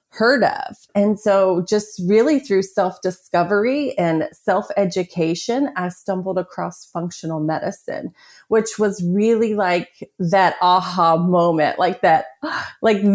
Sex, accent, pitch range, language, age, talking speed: female, American, 175-215 Hz, English, 30-49, 115 wpm